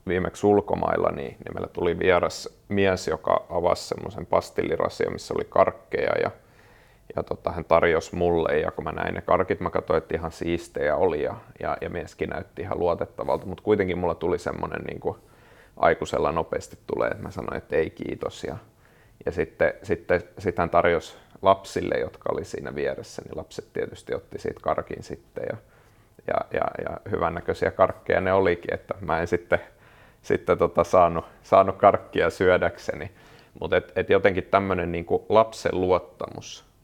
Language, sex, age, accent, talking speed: Finnish, male, 30-49, native, 165 wpm